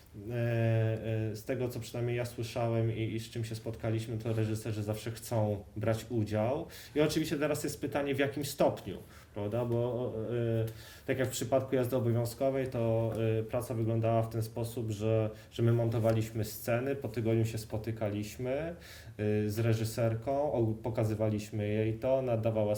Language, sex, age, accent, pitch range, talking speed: Polish, male, 20-39, native, 110-130 Hz, 140 wpm